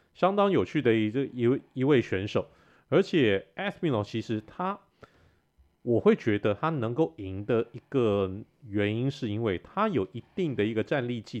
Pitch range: 100-145 Hz